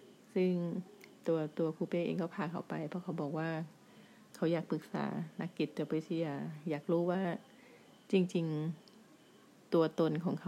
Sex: female